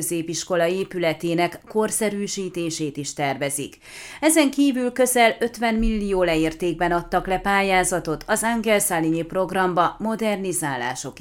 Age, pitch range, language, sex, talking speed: 30-49, 170-220 Hz, Hungarian, female, 95 wpm